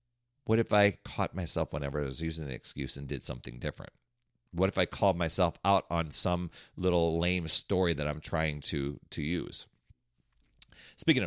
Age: 40-59